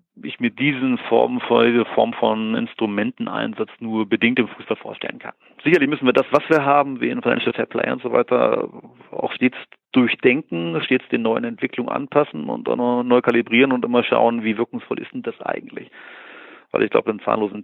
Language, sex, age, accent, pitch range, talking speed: German, male, 40-59, German, 110-130 Hz, 185 wpm